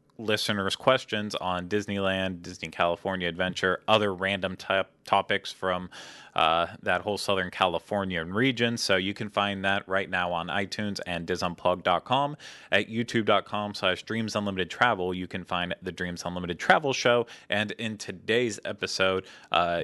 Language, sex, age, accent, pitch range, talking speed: English, male, 20-39, American, 95-120 Hz, 140 wpm